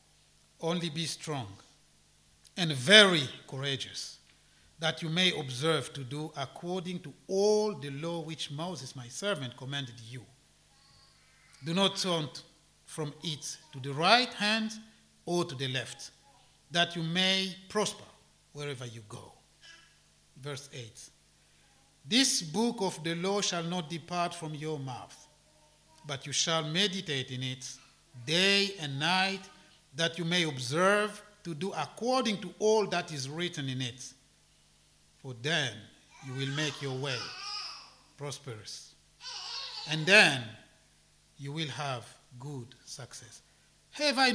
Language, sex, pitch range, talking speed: English, male, 135-180 Hz, 130 wpm